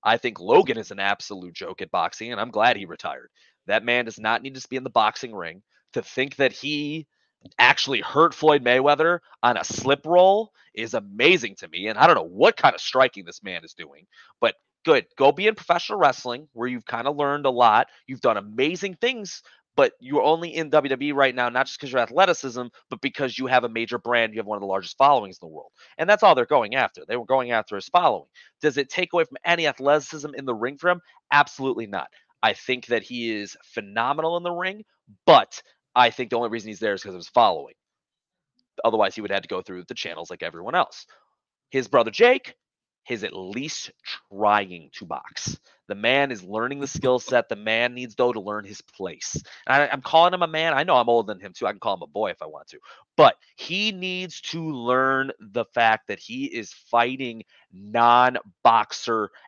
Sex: male